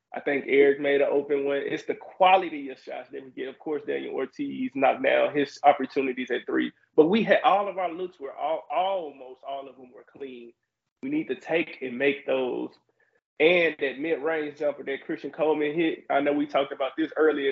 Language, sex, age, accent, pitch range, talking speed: English, male, 20-39, American, 140-185 Hz, 210 wpm